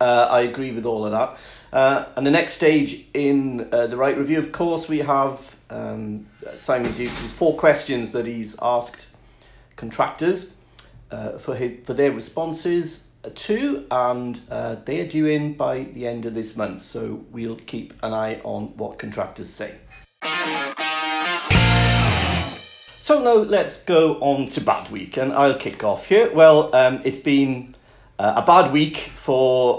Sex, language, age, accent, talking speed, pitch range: male, English, 50-69, British, 155 wpm, 115-145 Hz